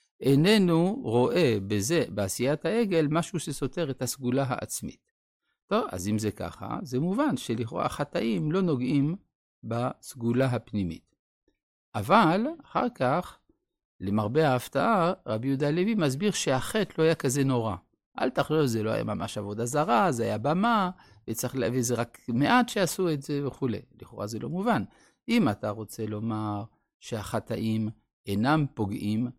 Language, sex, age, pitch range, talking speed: Hebrew, male, 50-69, 110-155 Hz, 135 wpm